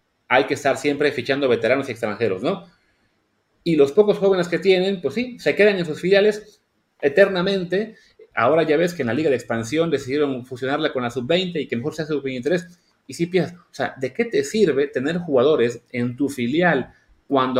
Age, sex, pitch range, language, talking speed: 30-49, male, 130-180 Hz, English, 200 wpm